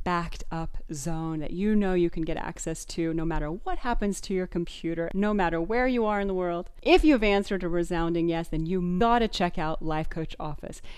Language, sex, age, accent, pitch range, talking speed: English, female, 40-59, American, 160-205 Hz, 225 wpm